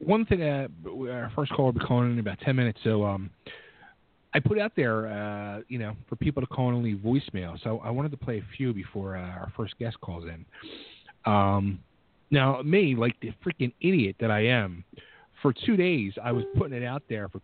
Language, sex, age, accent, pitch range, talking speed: English, male, 40-59, American, 110-145 Hz, 220 wpm